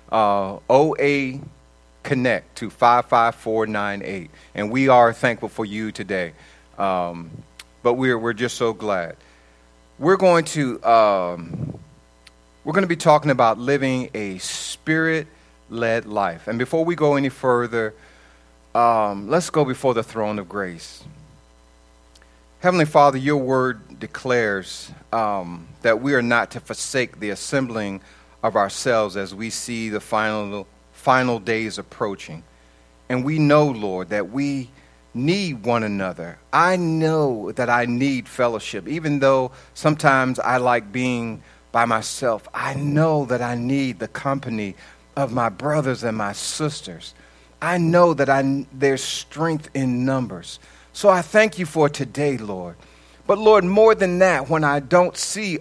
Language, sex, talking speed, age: English, male, 150 wpm, 40-59